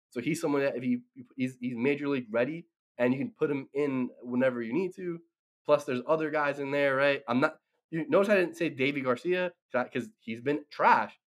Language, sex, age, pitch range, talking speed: English, male, 10-29, 125-175 Hz, 220 wpm